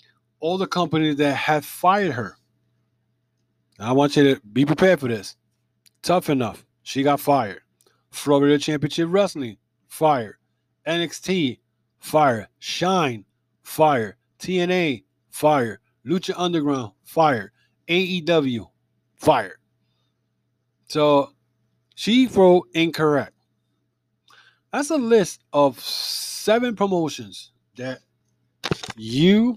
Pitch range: 120-165 Hz